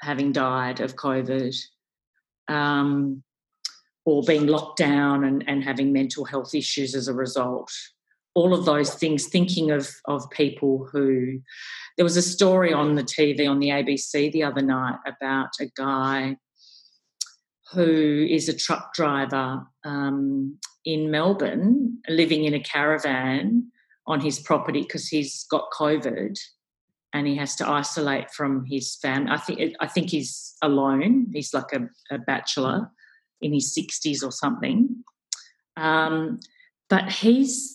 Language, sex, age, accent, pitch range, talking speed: English, female, 40-59, Australian, 140-180 Hz, 140 wpm